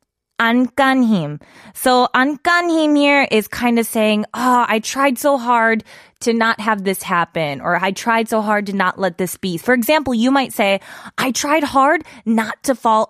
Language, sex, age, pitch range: Korean, female, 20-39, 210-290 Hz